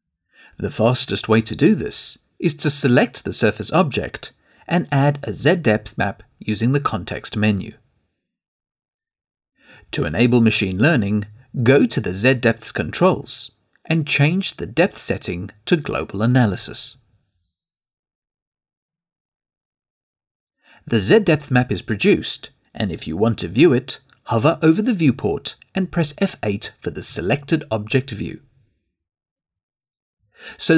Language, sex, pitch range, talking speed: English, male, 105-145 Hz, 125 wpm